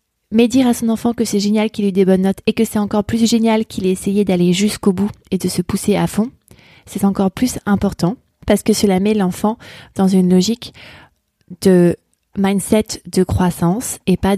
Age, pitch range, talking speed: 20-39, 175-205 Hz, 210 wpm